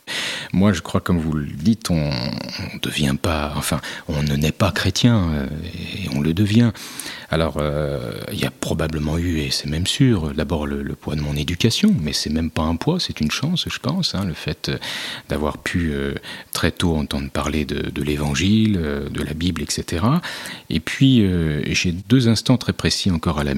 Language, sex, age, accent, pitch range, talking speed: French, male, 40-59, French, 75-100 Hz, 205 wpm